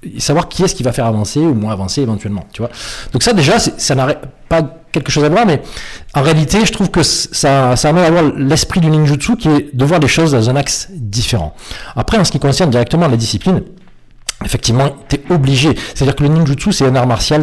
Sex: male